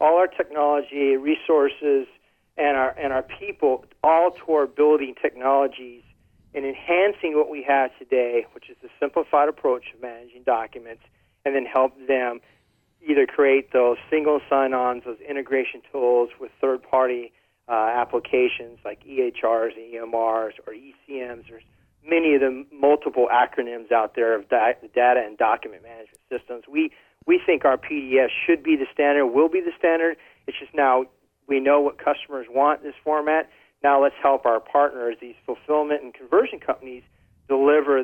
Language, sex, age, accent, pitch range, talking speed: English, male, 40-59, American, 125-155 Hz, 160 wpm